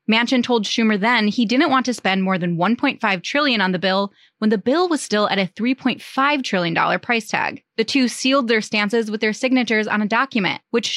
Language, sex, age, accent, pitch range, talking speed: English, female, 20-39, American, 200-255 Hz, 215 wpm